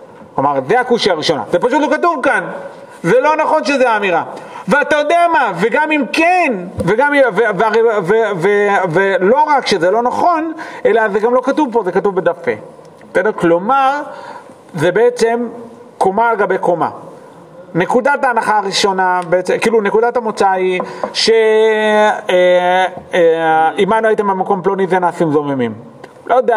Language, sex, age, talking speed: Hebrew, male, 40-59, 105 wpm